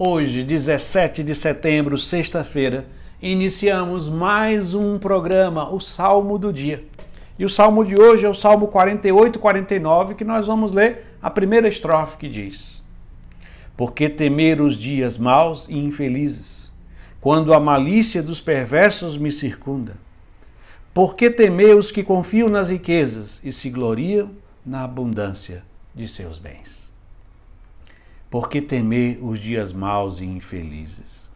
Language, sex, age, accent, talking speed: Portuguese, male, 60-79, Brazilian, 135 wpm